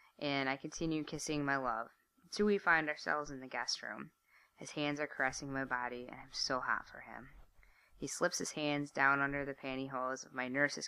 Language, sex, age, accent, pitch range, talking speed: English, female, 20-39, American, 125-150 Hz, 205 wpm